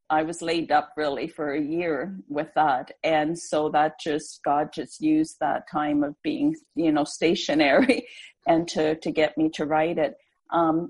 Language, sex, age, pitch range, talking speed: English, female, 50-69, 155-180 Hz, 180 wpm